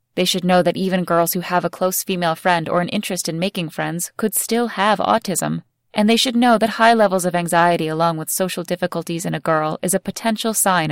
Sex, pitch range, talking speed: female, 160-190 Hz, 230 wpm